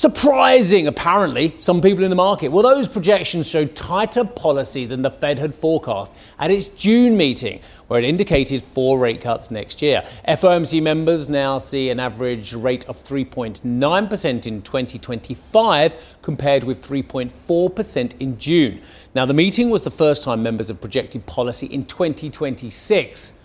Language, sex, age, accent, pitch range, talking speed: English, male, 40-59, British, 125-185 Hz, 150 wpm